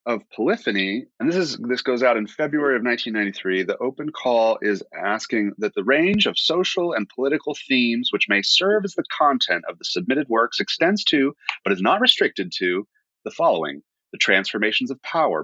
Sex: male